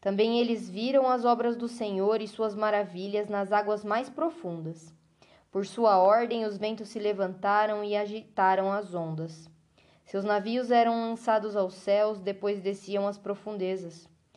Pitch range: 190-235 Hz